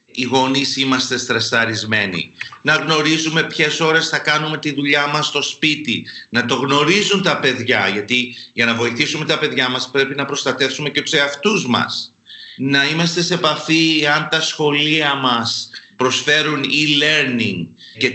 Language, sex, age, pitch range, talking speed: Greek, male, 40-59, 125-150 Hz, 150 wpm